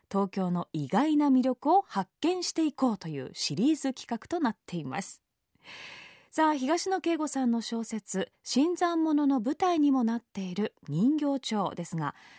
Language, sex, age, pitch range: Japanese, female, 20-39, 210-300 Hz